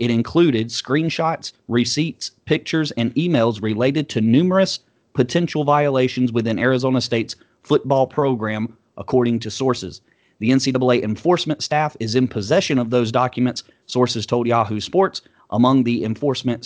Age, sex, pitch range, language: 30-49, male, 120-140 Hz, English